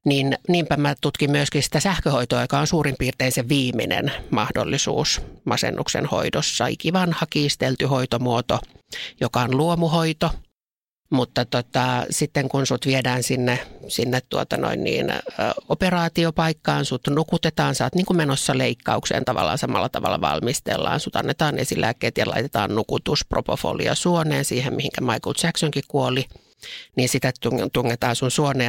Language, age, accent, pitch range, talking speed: Finnish, 50-69, native, 125-155 Hz, 135 wpm